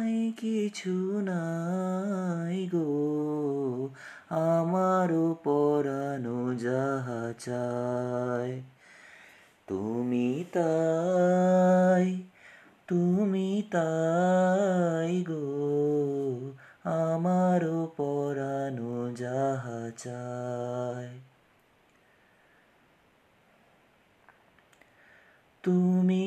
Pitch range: 165-240 Hz